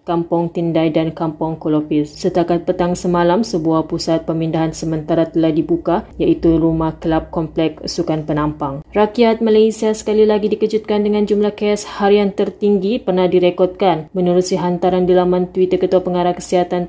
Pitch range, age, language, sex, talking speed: 165-185 Hz, 20-39, Malay, female, 140 wpm